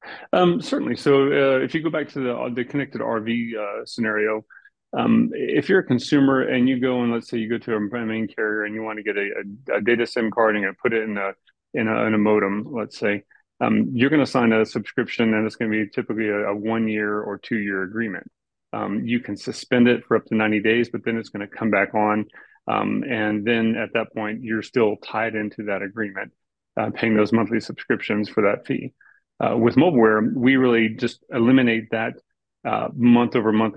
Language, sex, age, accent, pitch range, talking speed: English, male, 30-49, American, 110-125 Hz, 215 wpm